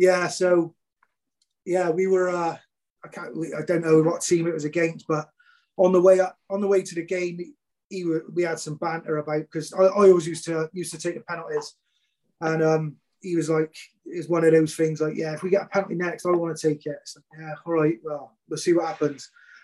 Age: 30-49